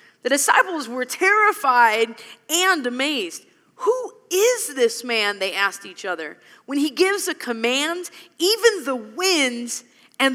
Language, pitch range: English, 275-385 Hz